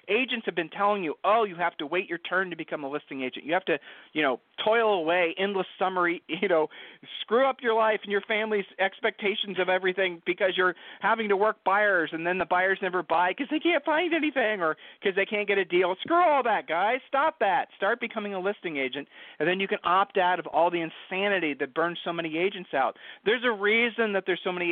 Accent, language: American, English